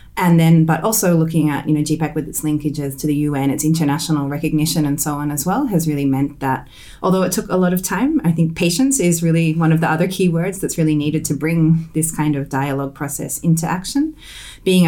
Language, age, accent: English, 30-49, Australian